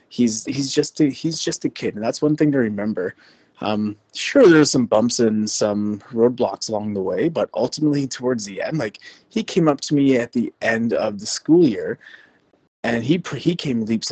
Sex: male